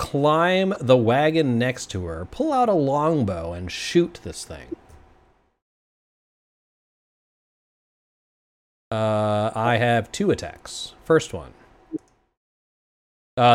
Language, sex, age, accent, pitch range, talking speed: English, male, 30-49, American, 95-125 Hz, 95 wpm